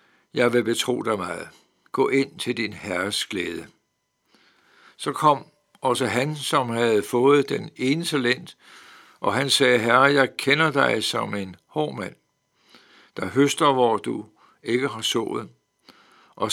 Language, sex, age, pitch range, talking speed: Danish, male, 60-79, 120-145 Hz, 140 wpm